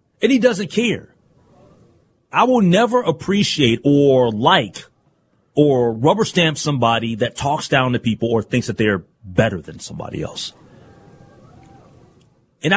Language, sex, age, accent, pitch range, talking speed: English, male, 30-49, American, 135-225 Hz, 130 wpm